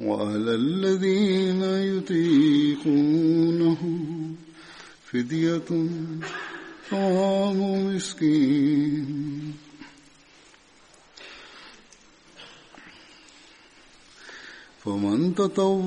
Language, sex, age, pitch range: Swahili, male, 50-69, 145-190 Hz